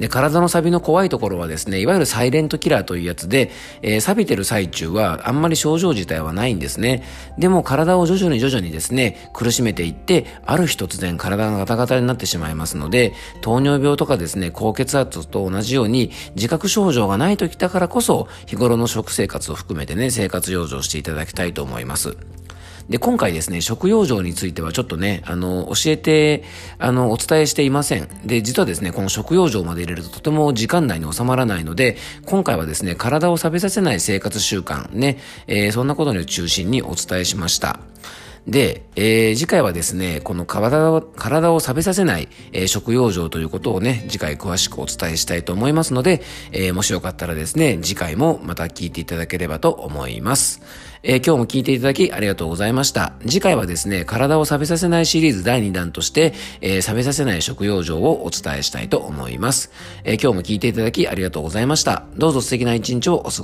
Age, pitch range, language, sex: 40-59, 90-140 Hz, Japanese, male